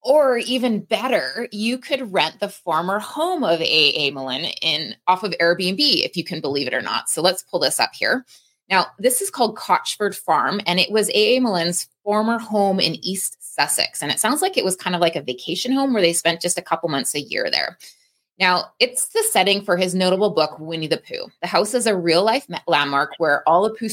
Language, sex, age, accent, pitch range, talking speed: English, female, 20-39, American, 165-215 Hz, 230 wpm